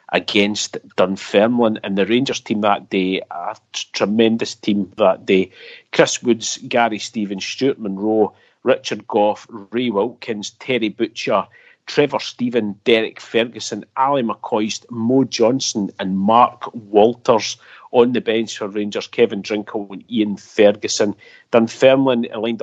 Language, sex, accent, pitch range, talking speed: English, male, British, 105-125 Hz, 130 wpm